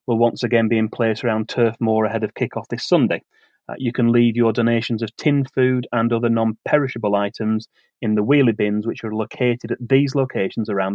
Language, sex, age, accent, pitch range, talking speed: English, male, 30-49, British, 110-125 Hz, 210 wpm